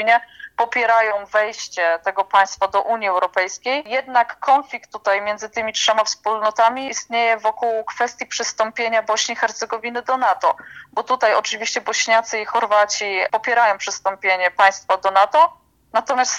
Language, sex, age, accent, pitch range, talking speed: Polish, female, 20-39, native, 200-235 Hz, 130 wpm